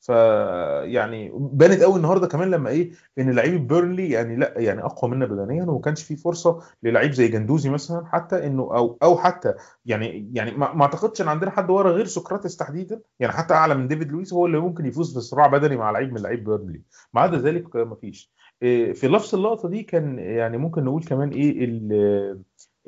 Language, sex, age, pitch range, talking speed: Arabic, male, 30-49, 120-180 Hz, 195 wpm